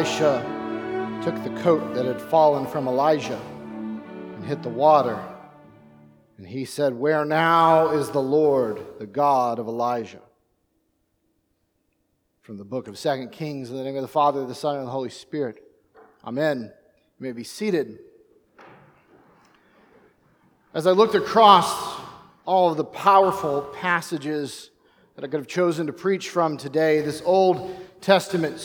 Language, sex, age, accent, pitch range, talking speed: English, male, 40-59, American, 125-165 Hz, 145 wpm